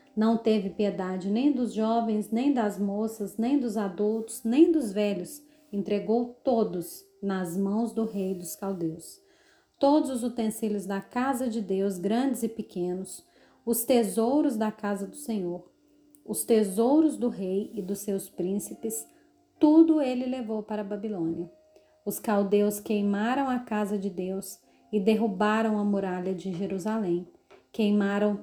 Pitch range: 200-245 Hz